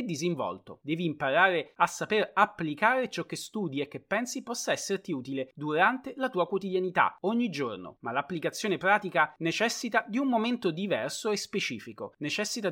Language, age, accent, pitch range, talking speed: Italian, 30-49, native, 140-220 Hz, 150 wpm